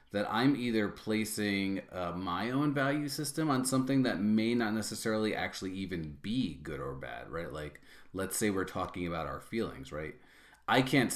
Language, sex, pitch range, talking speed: English, male, 90-115 Hz, 175 wpm